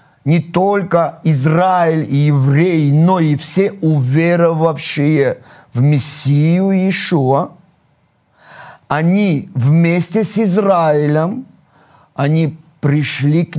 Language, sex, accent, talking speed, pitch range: Russian, male, native, 85 wpm, 140-180 Hz